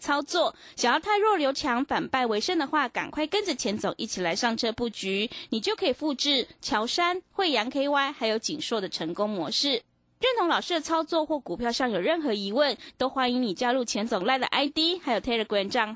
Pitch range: 225-330 Hz